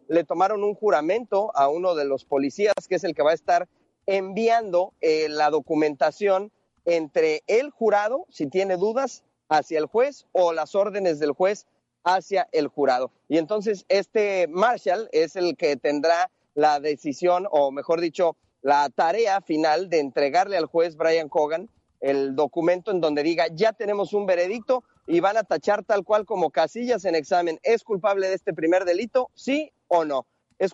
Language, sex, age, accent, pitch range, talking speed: Spanish, male, 40-59, Mexican, 155-210 Hz, 170 wpm